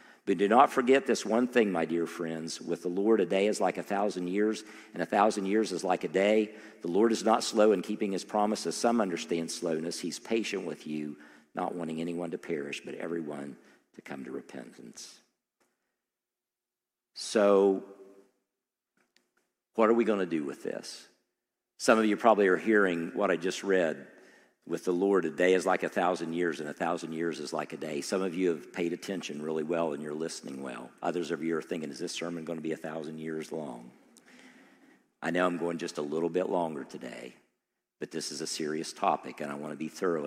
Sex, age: male, 50-69